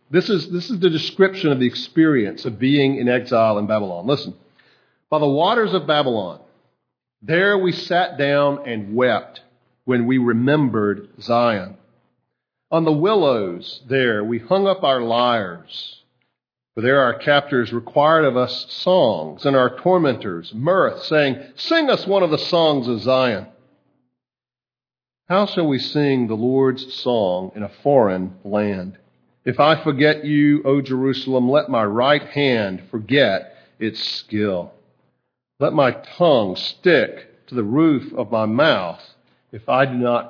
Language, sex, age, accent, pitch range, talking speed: English, male, 50-69, American, 120-160 Hz, 145 wpm